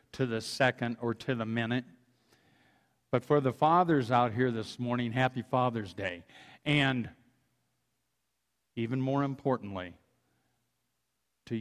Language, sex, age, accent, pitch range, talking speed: English, male, 50-69, American, 110-135 Hz, 120 wpm